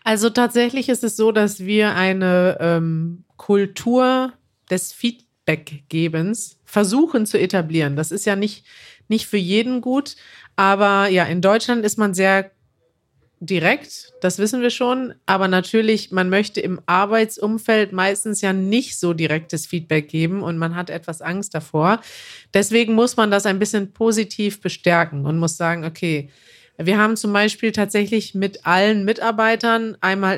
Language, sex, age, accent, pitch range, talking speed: German, female, 30-49, German, 180-225 Hz, 150 wpm